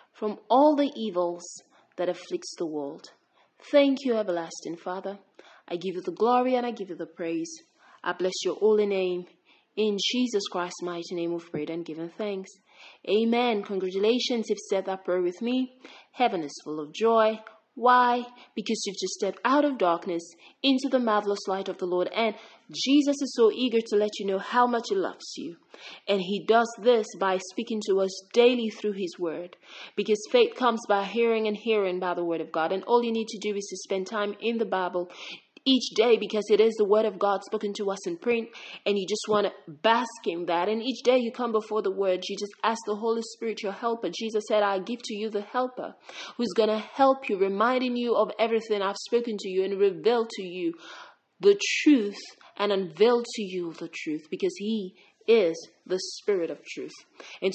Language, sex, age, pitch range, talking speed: English, female, 30-49, 190-235 Hz, 205 wpm